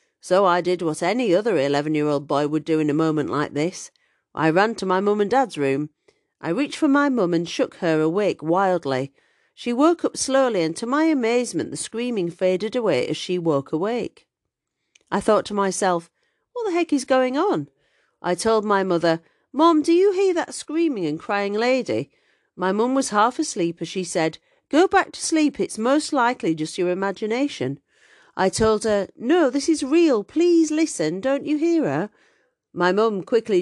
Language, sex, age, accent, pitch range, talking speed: English, female, 40-59, British, 160-265 Hz, 190 wpm